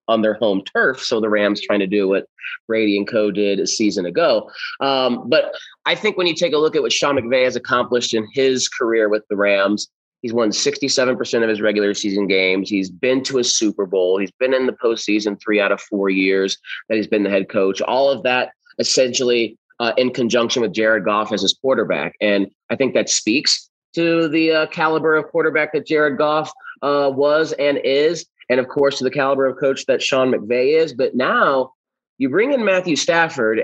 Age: 30-49